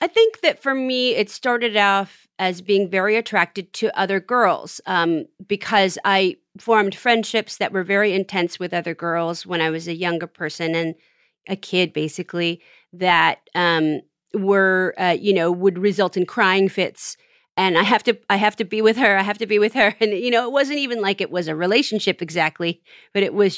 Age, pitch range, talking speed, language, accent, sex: 30-49, 180-220 Hz, 200 wpm, English, American, female